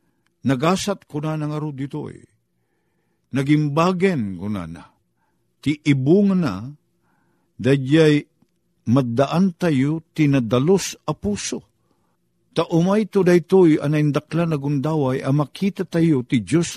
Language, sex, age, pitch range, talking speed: Filipino, male, 50-69, 120-165 Hz, 105 wpm